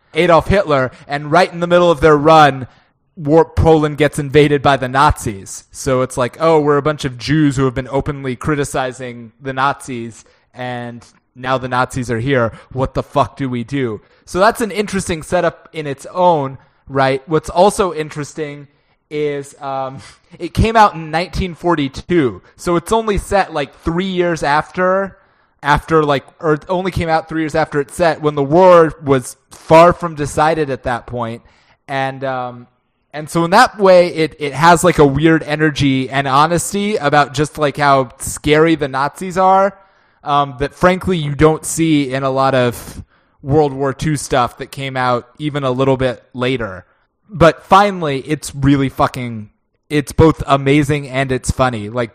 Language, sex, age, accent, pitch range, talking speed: English, male, 20-39, American, 130-160 Hz, 180 wpm